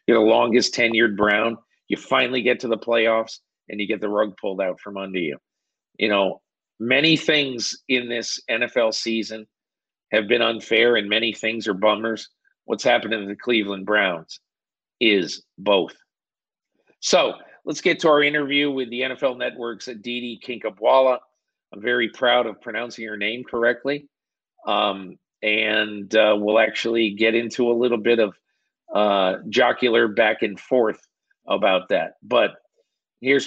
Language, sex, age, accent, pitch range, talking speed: English, male, 50-69, American, 110-135 Hz, 150 wpm